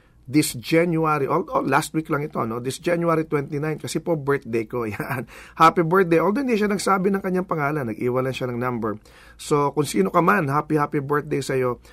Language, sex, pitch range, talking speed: English, male, 120-160 Hz, 195 wpm